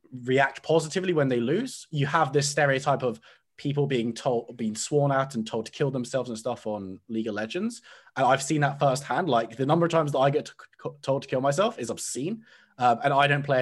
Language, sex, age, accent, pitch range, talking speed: English, male, 20-39, British, 115-150 Hz, 235 wpm